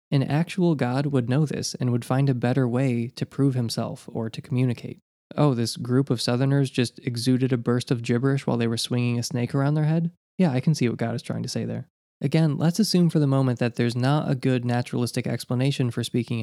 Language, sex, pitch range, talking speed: English, male, 120-140 Hz, 235 wpm